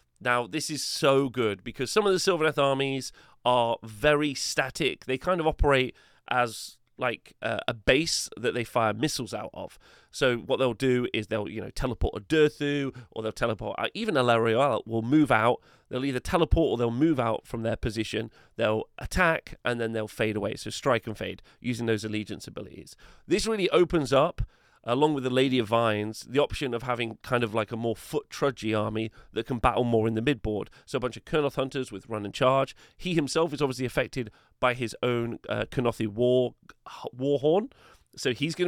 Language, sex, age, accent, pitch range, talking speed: English, male, 30-49, British, 110-140 Hz, 195 wpm